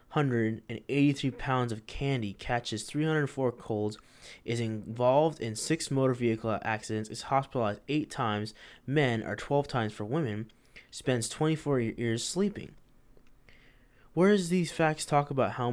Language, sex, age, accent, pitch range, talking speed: English, male, 20-39, American, 115-140 Hz, 135 wpm